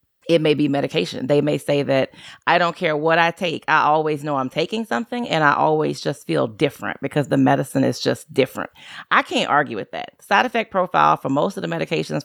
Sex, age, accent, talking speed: female, 30-49, American, 220 wpm